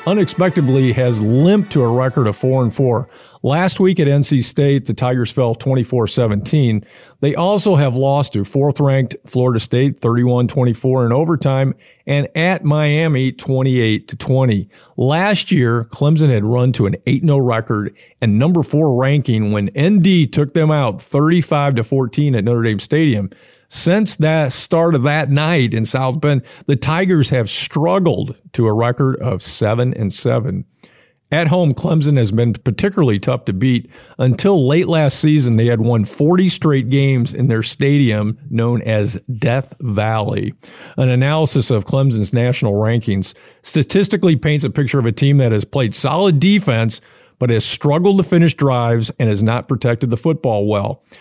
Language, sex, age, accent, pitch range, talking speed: English, male, 50-69, American, 120-150 Hz, 160 wpm